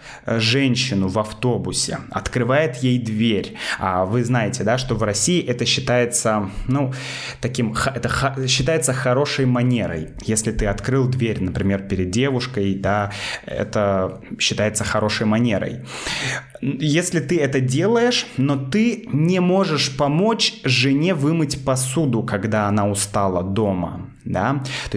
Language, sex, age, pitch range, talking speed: Russian, male, 20-39, 110-140 Hz, 125 wpm